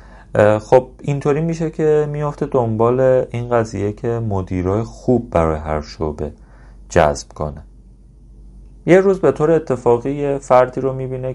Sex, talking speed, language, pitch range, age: male, 130 wpm, Persian, 80-125 Hz, 30-49